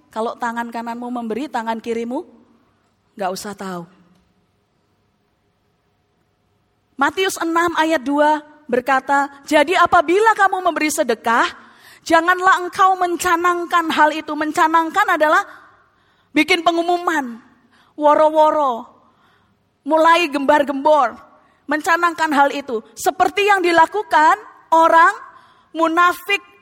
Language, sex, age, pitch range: English, female, 30-49, 275-360 Hz